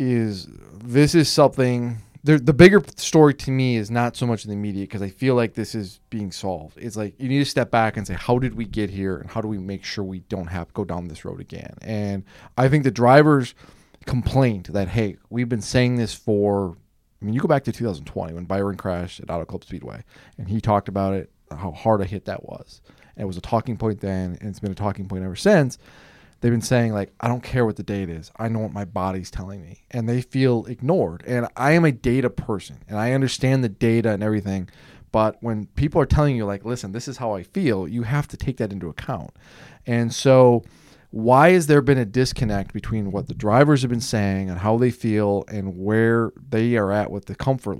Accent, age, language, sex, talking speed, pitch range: American, 20-39, English, male, 235 wpm, 100-125 Hz